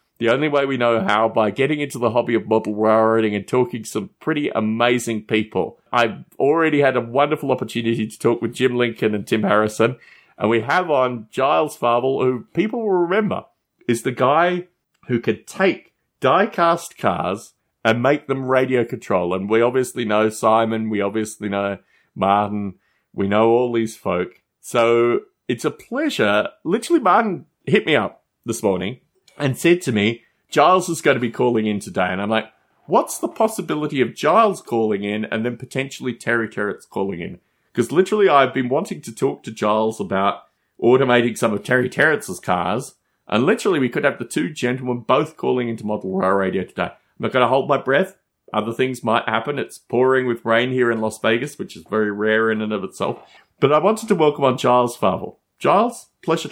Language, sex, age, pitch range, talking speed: English, male, 30-49, 110-135 Hz, 190 wpm